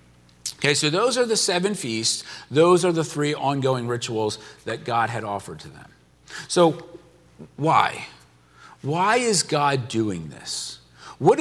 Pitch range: 120-185 Hz